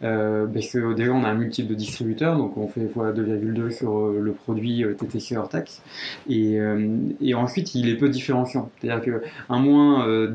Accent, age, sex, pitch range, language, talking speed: French, 20-39, male, 110-130 Hz, French, 190 wpm